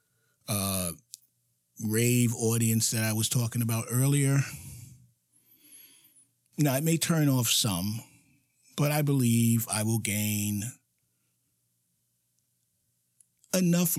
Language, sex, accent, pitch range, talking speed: English, male, American, 110-140 Hz, 95 wpm